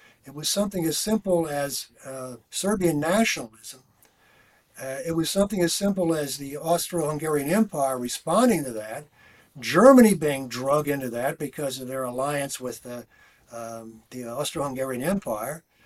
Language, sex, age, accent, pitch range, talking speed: English, male, 60-79, American, 140-195 Hz, 140 wpm